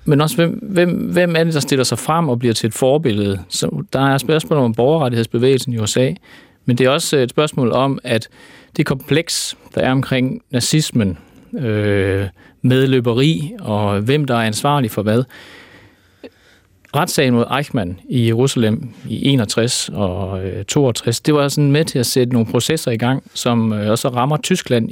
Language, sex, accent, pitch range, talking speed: Danish, male, native, 105-135 Hz, 170 wpm